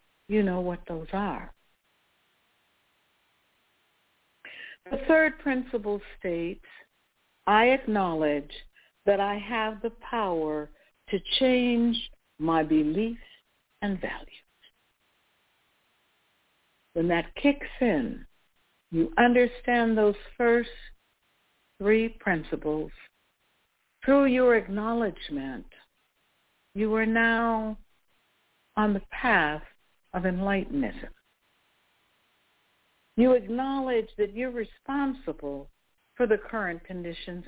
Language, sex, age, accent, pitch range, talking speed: English, female, 60-79, American, 170-235 Hz, 85 wpm